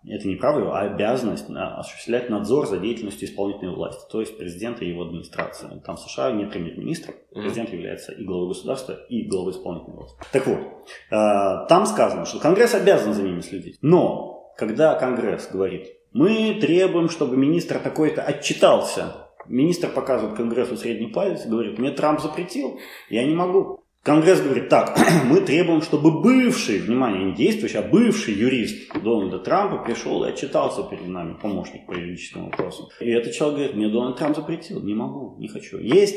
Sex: male